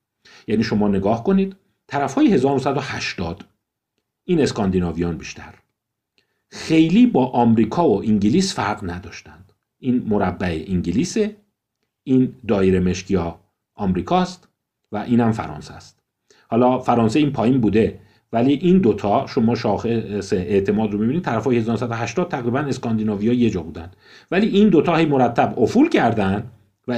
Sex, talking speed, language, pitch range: male, 125 wpm, Persian, 100-140 Hz